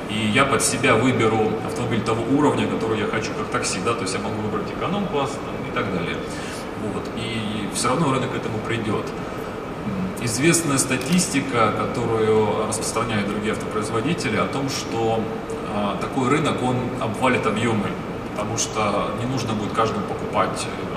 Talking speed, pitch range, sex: 150 wpm, 105-125 Hz, male